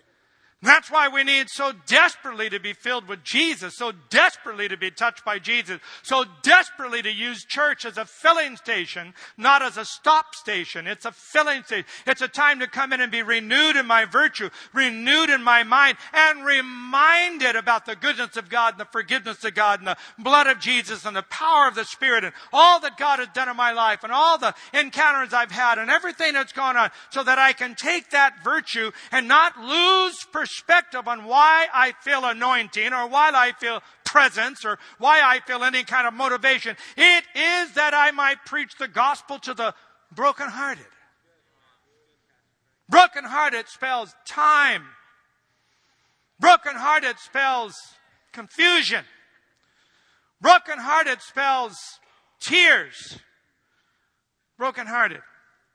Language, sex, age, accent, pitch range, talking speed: English, male, 50-69, American, 235-295 Hz, 155 wpm